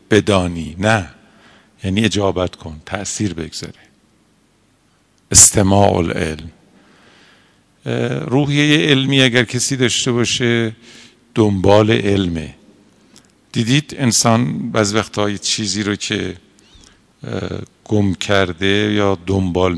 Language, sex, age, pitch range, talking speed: Persian, male, 50-69, 90-115 Hz, 85 wpm